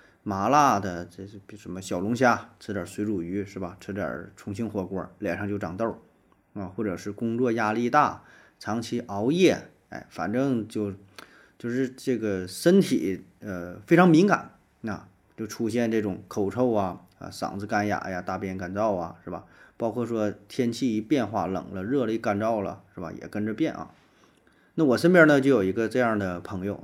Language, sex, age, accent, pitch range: Chinese, male, 30-49, native, 100-125 Hz